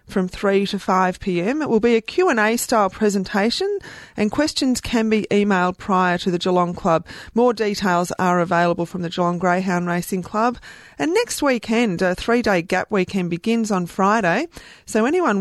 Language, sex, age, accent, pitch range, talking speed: English, female, 30-49, Australian, 180-225 Hz, 170 wpm